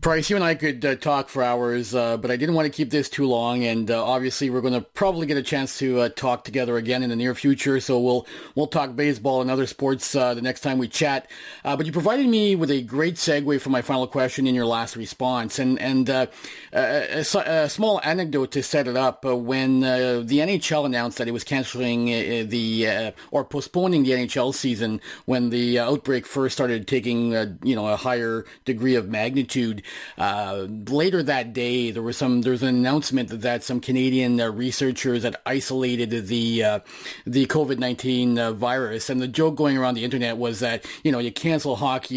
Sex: male